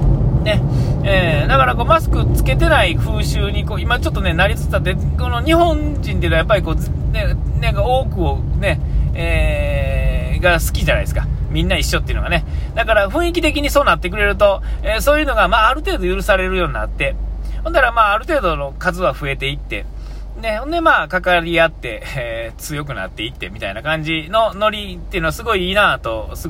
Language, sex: Japanese, male